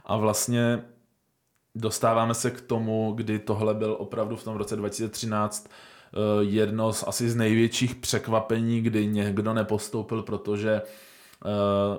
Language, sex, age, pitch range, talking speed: Czech, male, 20-39, 100-110 Hz, 130 wpm